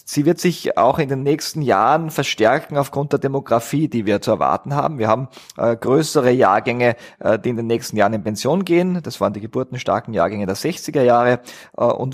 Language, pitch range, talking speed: German, 120-155 Hz, 190 wpm